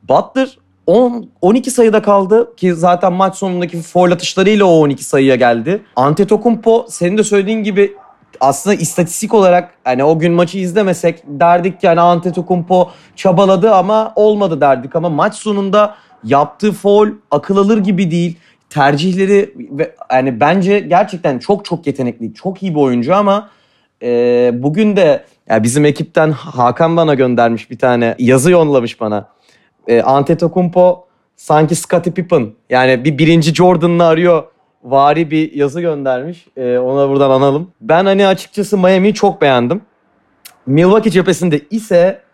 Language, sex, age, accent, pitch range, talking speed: Turkish, male, 30-49, native, 140-195 Hz, 135 wpm